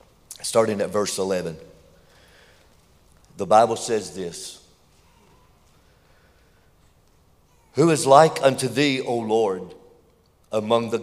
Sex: male